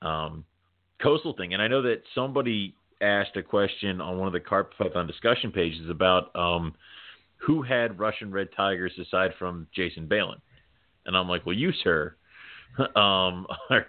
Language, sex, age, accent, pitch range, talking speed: English, male, 30-49, American, 90-100 Hz, 160 wpm